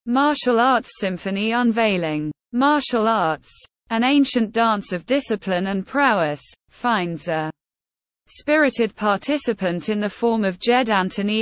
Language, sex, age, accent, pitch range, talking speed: English, female, 20-39, British, 180-245 Hz, 120 wpm